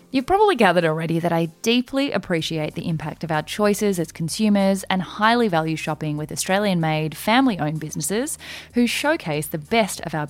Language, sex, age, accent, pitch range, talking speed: English, female, 20-39, Australian, 165-245 Hz, 170 wpm